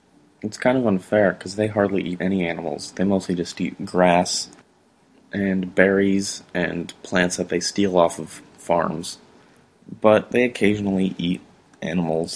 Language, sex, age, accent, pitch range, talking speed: English, male, 20-39, American, 90-105 Hz, 145 wpm